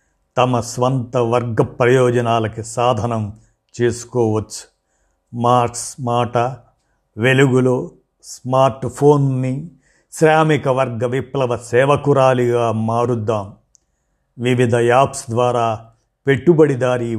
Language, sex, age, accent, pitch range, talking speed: Telugu, male, 50-69, native, 110-130 Hz, 70 wpm